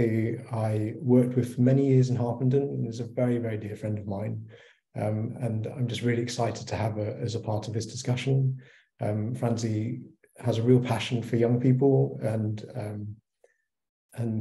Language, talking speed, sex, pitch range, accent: English, 185 wpm, male, 110-125 Hz, British